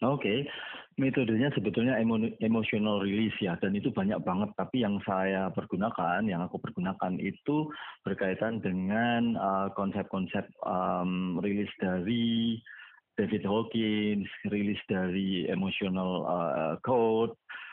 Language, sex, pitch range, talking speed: Indonesian, male, 100-115 Hz, 100 wpm